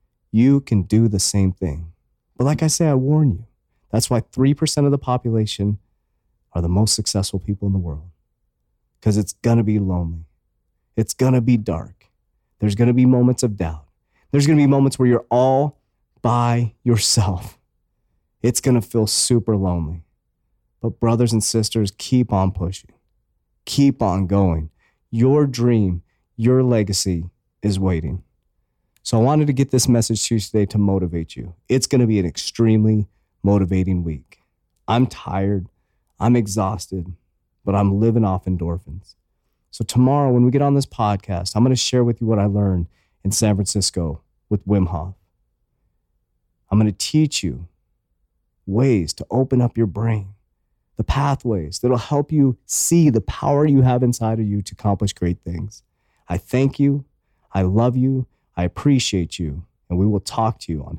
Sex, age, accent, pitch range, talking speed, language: male, 30-49, American, 95-125 Hz, 165 wpm, English